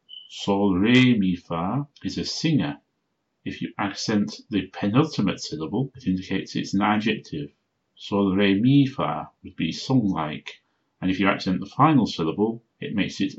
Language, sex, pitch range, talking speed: English, male, 85-105 Hz, 155 wpm